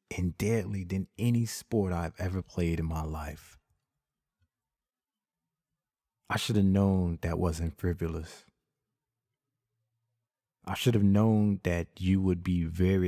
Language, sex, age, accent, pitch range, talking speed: English, male, 30-49, American, 85-105 Hz, 125 wpm